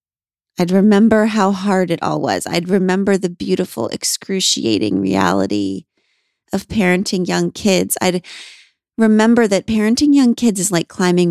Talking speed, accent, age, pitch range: 140 wpm, American, 30-49, 145-200 Hz